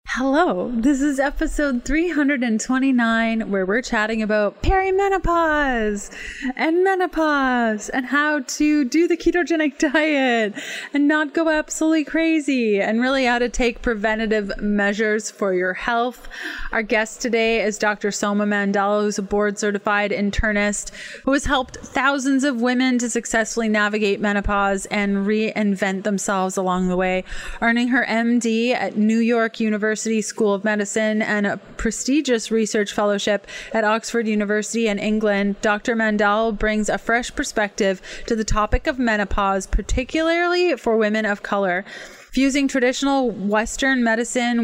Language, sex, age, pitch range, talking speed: English, female, 20-39, 210-260 Hz, 135 wpm